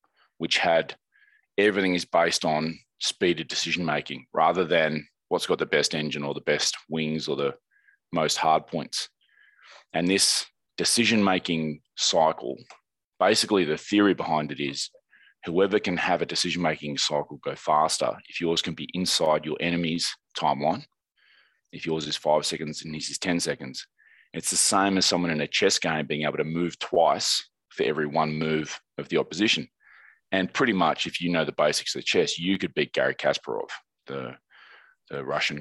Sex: male